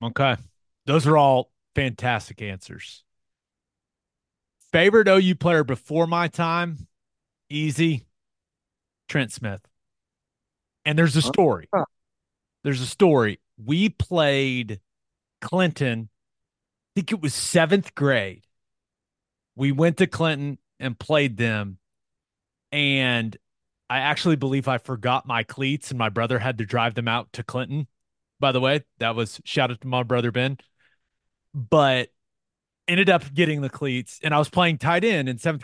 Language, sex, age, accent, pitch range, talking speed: English, male, 30-49, American, 115-155 Hz, 135 wpm